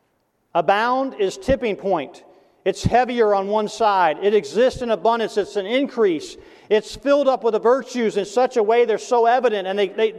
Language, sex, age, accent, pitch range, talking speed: English, male, 40-59, American, 185-230 Hz, 190 wpm